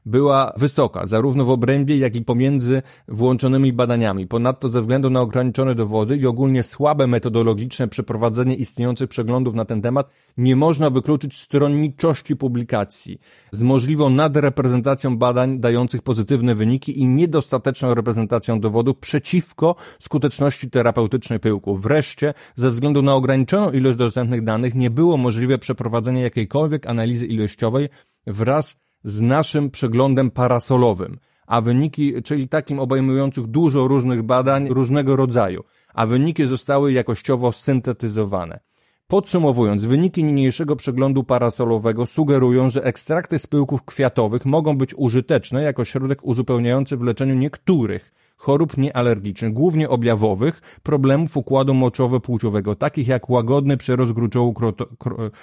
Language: Polish